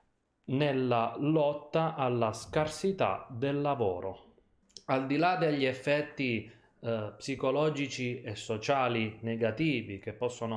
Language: Italian